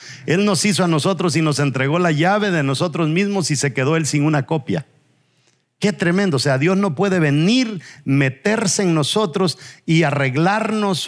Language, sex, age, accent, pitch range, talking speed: English, male, 50-69, Mexican, 145-190 Hz, 180 wpm